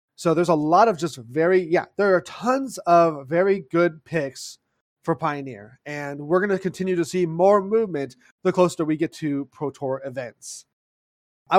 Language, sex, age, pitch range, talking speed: English, male, 30-49, 155-185 Hz, 180 wpm